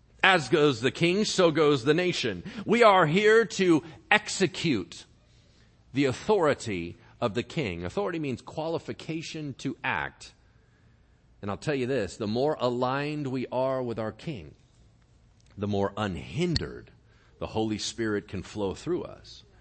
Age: 40-59